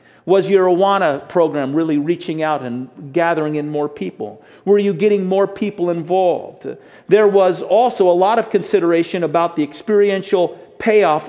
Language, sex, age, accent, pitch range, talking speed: English, male, 40-59, American, 140-195 Hz, 155 wpm